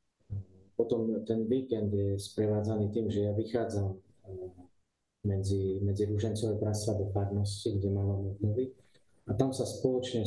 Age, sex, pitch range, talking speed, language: 20-39, male, 100-120 Hz, 130 wpm, Slovak